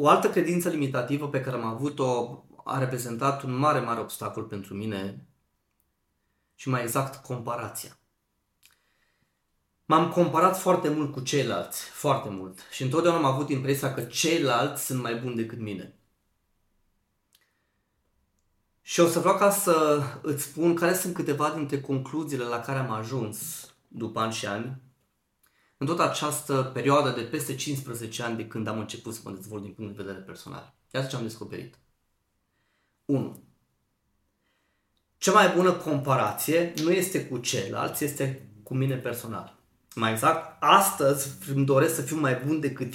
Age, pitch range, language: 20-39, 110-150 Hz, Romanian